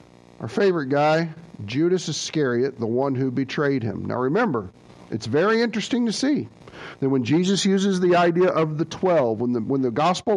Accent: American